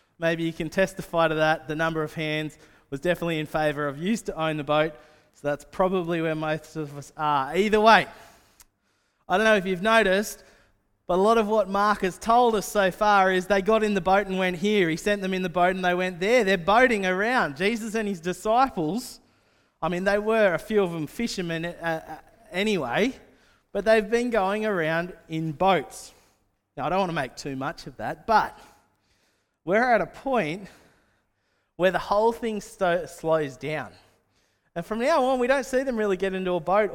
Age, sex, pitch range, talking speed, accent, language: 20-39, male, 160-210 Hz, 200 wpm, Australian, English